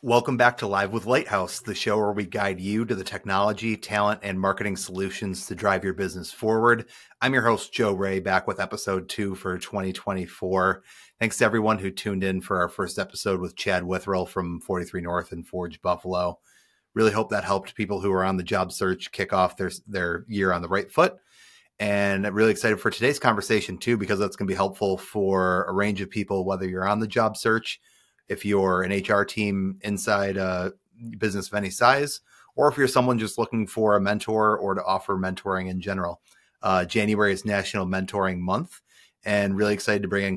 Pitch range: 95-105 Hz